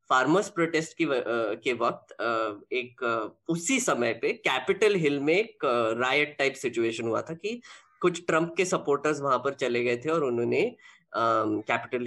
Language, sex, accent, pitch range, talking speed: Hindi, female, native, 145-215 Hz, 150 wpm